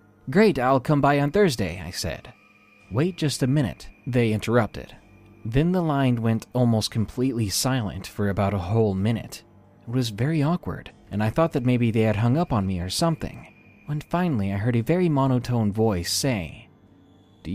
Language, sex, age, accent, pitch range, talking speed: English, male, 30-49, American, 105-150 Hz, 180 wpm